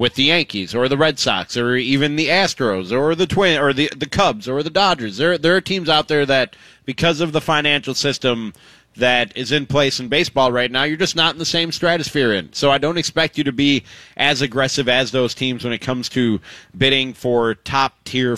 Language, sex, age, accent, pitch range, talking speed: English, male, 30-49, American, 130-165 Hz, 220 wpm